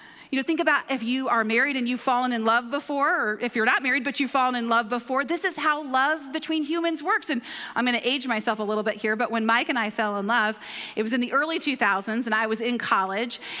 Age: 30-49